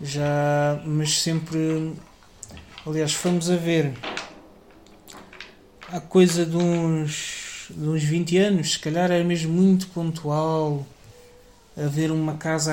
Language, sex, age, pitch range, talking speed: Portuguese, male, 20-39, 150-175 Hz, 120 wpm